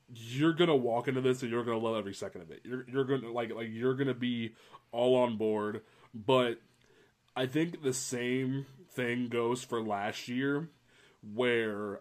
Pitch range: 115-140 Hz